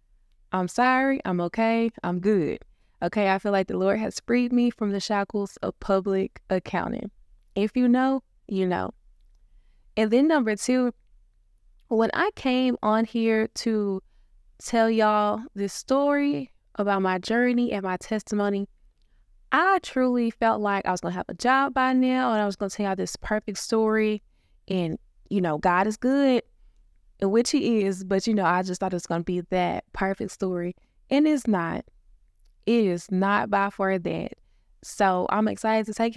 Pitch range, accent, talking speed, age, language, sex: 185-240 Hz, American, 175 wpm, 20-39, English, female